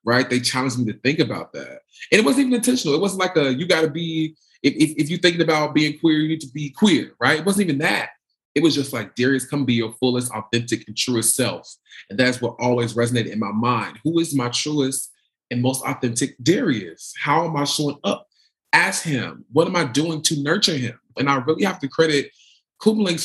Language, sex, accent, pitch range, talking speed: English, male, American, 130-170 Hz, 230 wpm